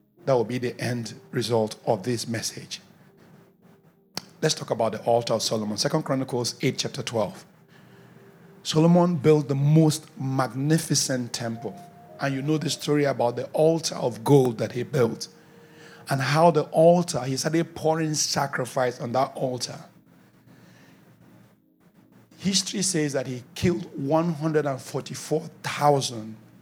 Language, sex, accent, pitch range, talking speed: English, male, Nigerian, 120-160 Hz, 130 wpm